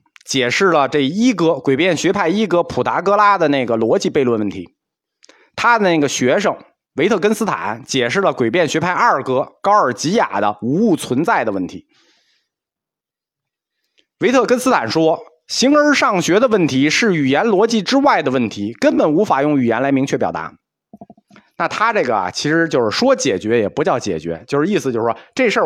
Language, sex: Chinese, male